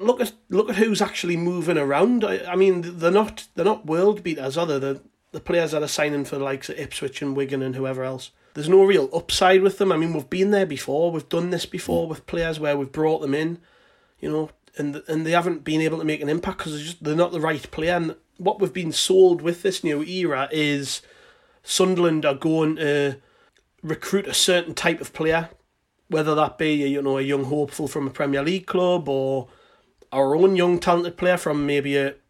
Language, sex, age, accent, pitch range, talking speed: English, male, 30-49, British, 150-185 Hz, 220 wpm